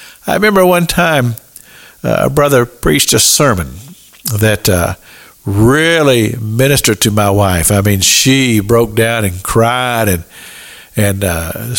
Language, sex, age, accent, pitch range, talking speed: English, male, 50-69, American, 110-160 Hz, 145 wpm